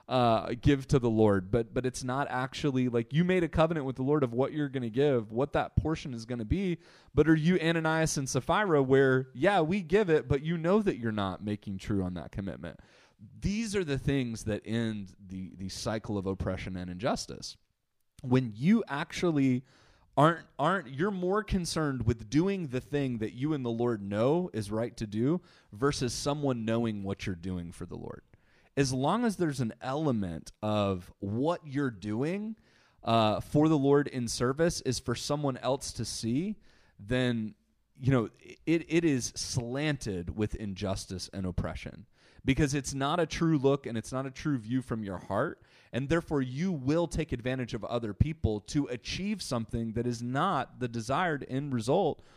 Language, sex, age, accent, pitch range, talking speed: English, male, 30-49, American, 110-155 Hz, 190 wpm